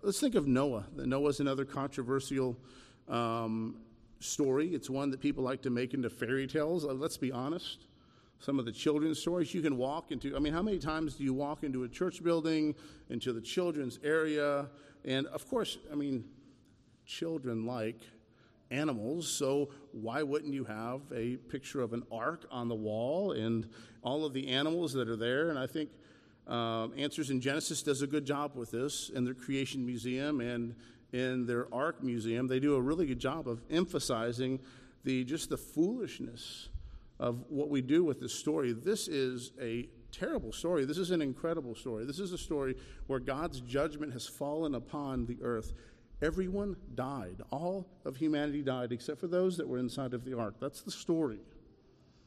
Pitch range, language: 120-150 Hz, English